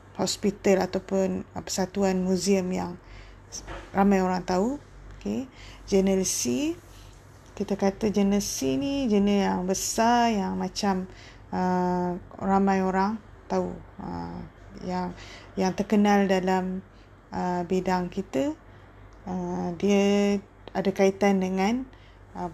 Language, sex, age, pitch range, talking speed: Malay, female, 20-39, 130-195 Hz, 105 wpm